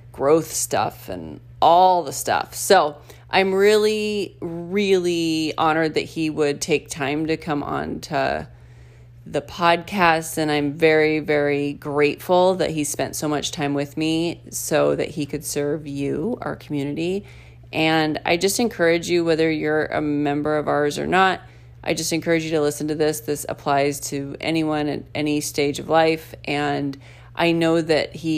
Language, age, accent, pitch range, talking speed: English, 30-49, American, 140-160 Hz, 165 wpm